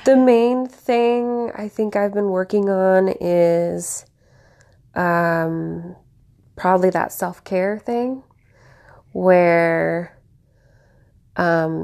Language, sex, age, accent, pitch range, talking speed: English, female, 20-39, American, 145-175 Hz, 90 wpm